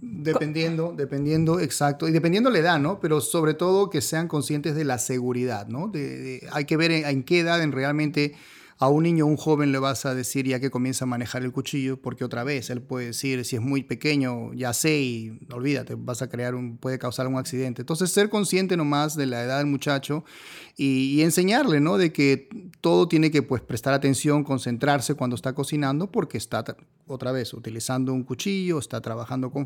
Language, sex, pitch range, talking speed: Spanish, male, 125-160 Hz, 205 wpm